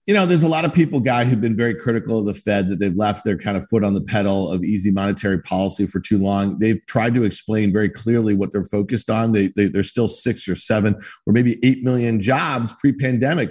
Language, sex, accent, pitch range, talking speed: English, male, American, 115-140 Hz, 240 wpm